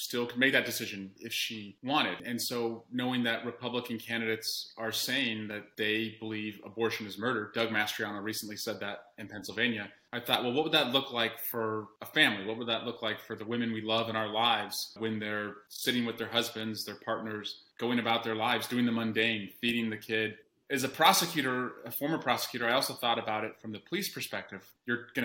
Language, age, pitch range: English, 30-49, 110-120 Hz